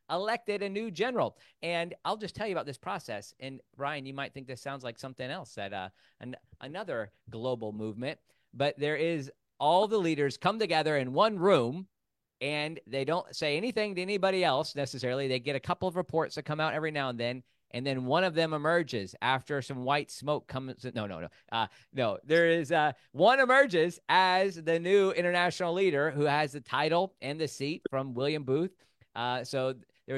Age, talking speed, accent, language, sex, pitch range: 40-59, 200 wpm, American, English, male, 115-155 Hz